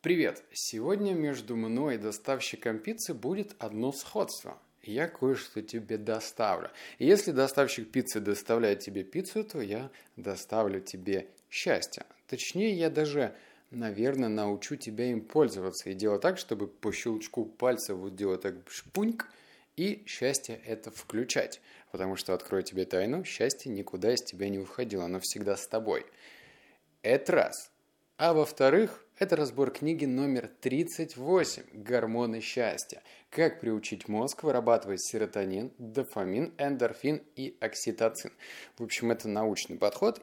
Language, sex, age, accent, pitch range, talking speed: Russian, male, 30-49, native, 105-145 Hz, 135 wpm